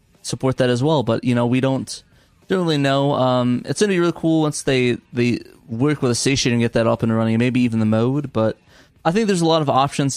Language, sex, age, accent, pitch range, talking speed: English, male, 20-39, American, 115-135 Hz, 260 wpm